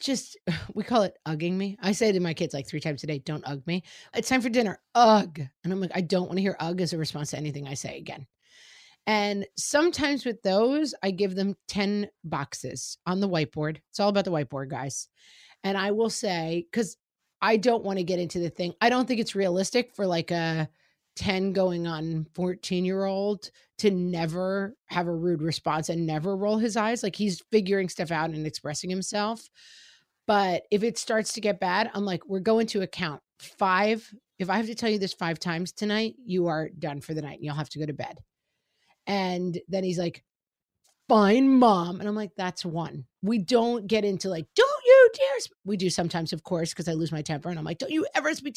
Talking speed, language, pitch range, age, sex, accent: 220 wpm, English, 165-215 Hz, 30-49, female, American